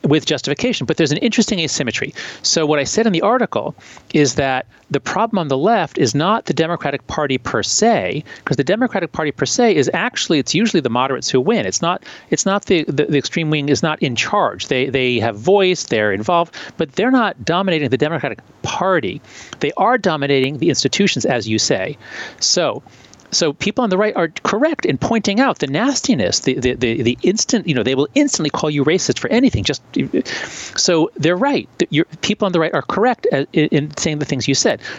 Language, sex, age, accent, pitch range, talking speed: English, male, 40-59, American, 130-190 Hz, 205 wpm